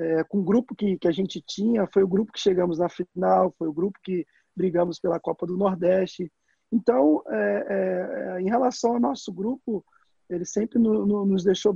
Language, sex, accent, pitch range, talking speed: Portuguese, male, Brazilian, 175-205 Hz, 200 wpm